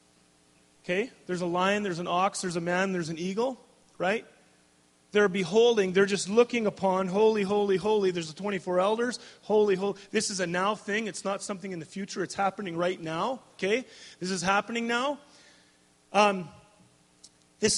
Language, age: English, 30-49